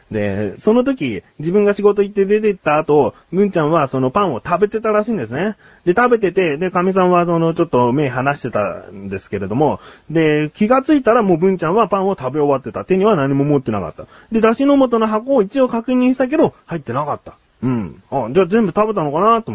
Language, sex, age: Japanese, male, 30-49